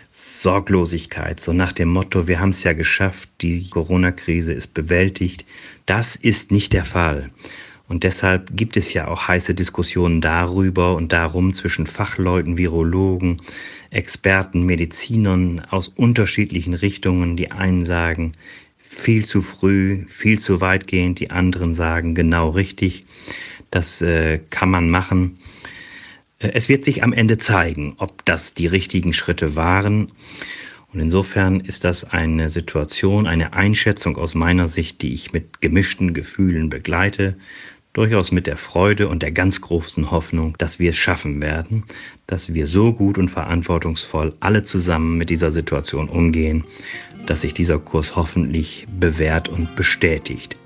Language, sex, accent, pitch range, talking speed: German, male, German, 85-95 Hz, 140 wpm